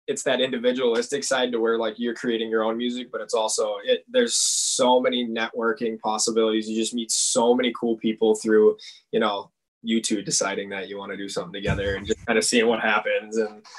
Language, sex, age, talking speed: English, male, 20-39, 215 wpm